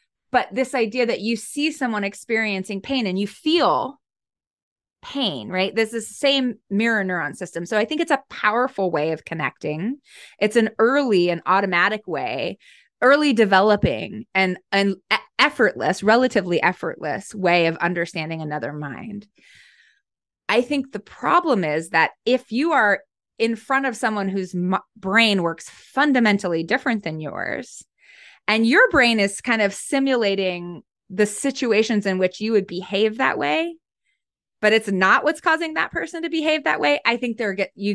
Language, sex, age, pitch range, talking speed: English, female, 20-39, 180-245 Hz, 155 wpm